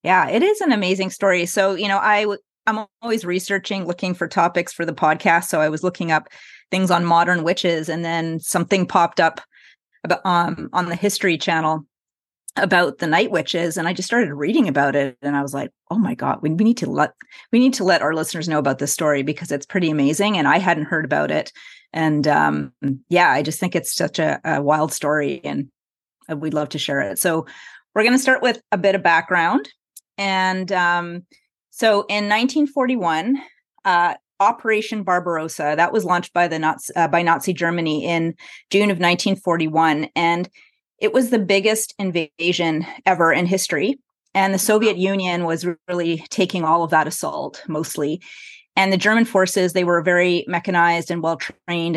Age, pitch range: 30-49, 160-195 Hz